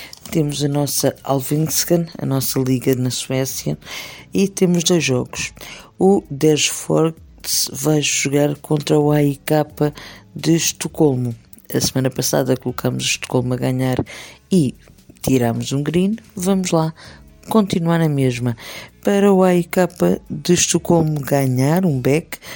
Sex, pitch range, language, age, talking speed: female, 130-175 Hz, Portuguese, 50-69, 125 wpm